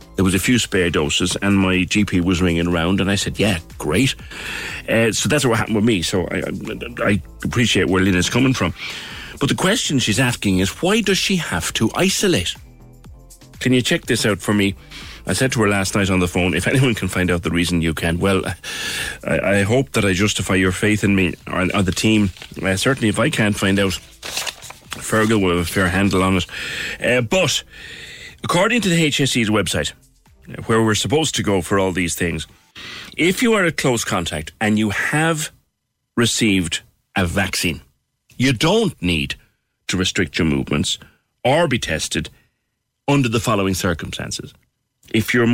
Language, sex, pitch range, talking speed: English, male, 90-120 Hz, 190 wpm